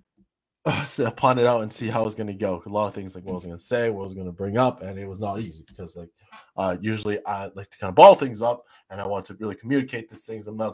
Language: English